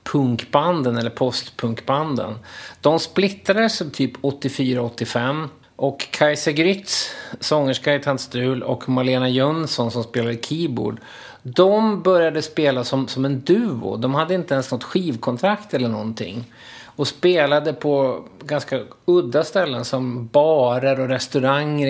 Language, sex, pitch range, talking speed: Swedish, male, 125-160 Hz, 125 wpm